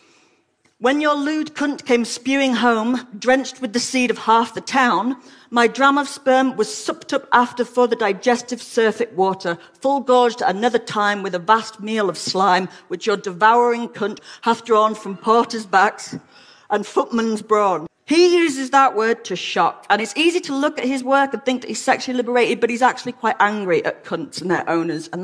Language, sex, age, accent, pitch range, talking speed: English, female, 40-59, British, 200-270 Hz, 195 wpm